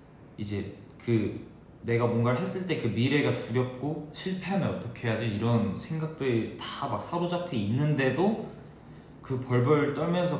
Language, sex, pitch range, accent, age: Korean, male, 100-135 Hz, native, 20-39